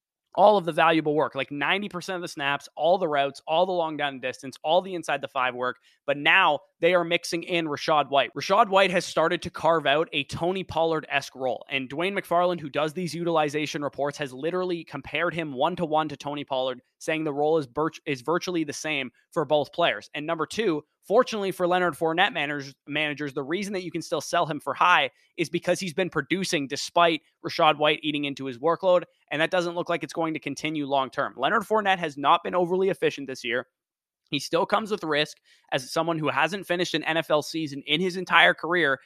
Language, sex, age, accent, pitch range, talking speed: English, male, 20-39, American, 145-175 Hz, 205 wpm